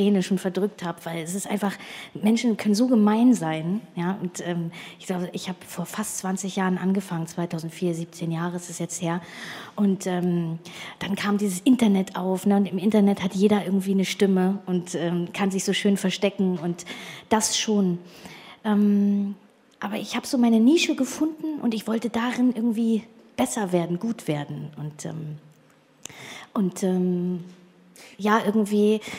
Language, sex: German, female